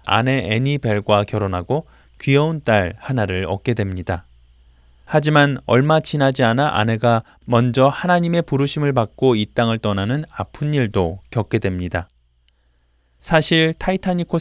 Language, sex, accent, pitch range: Korean, male, native, 100-150 Hz